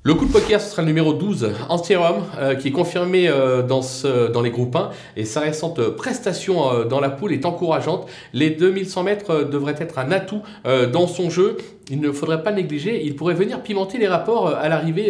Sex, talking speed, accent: male, 225 wpm, French